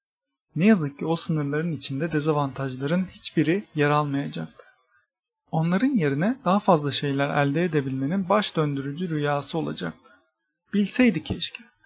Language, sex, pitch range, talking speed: Turkish, male, 140-180 Hz, 115 wpm